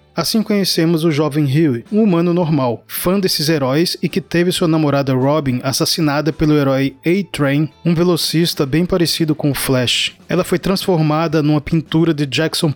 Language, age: Portuguese, 20-39